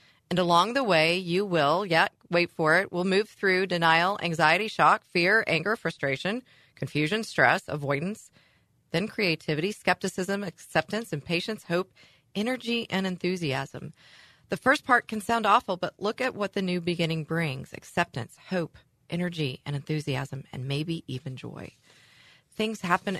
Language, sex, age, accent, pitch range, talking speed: English, female, 30-49, American, 145-195 Hz, 145 wpm